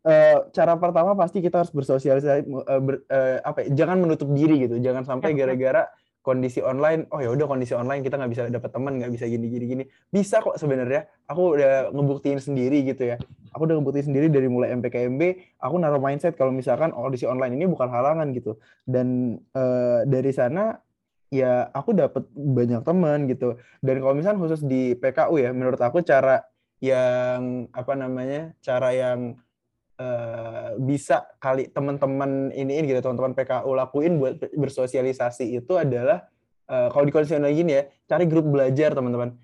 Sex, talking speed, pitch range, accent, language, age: male, 160 wpm, 130-155 Hz, native, Indonesian, 20-39